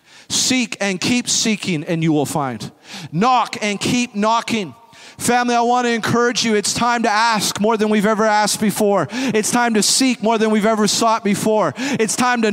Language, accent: English, American